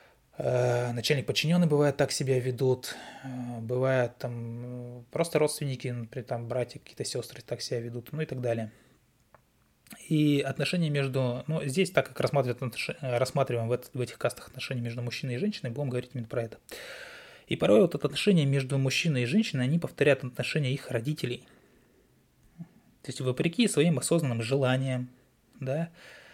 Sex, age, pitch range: male, 20-39, 125-160 Hz